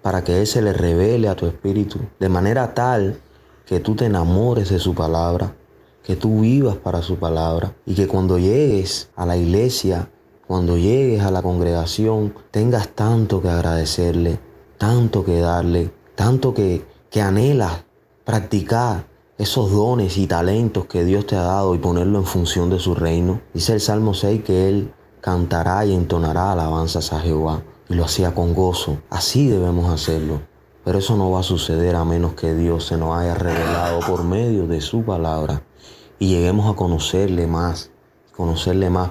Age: 20-39